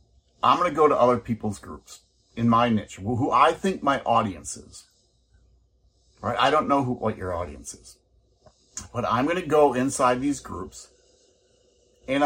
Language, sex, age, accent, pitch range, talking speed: English, male, 50-69, American, 110-150 Hz, 175 wpm